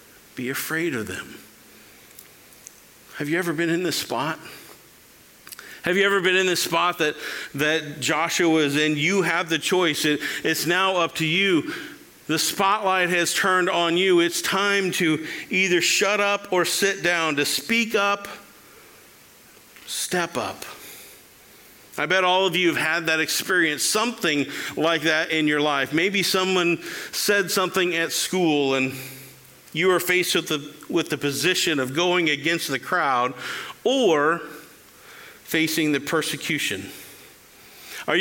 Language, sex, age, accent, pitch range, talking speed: English, male, 50-69, American, 150-180 Hz, 145 wpm